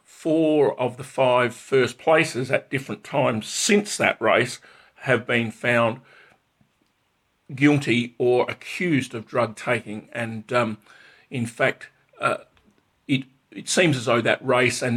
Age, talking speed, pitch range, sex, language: 50-69, 135 wpm, 115-140 Hz, male, English